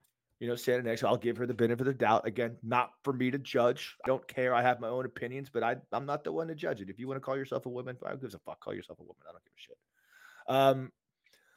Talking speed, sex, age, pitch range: 300 wpm, male, 30-49, 115-145 Hz